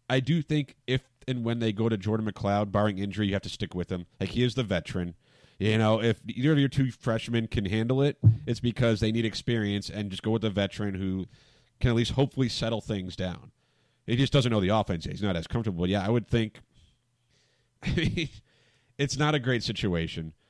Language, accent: English, American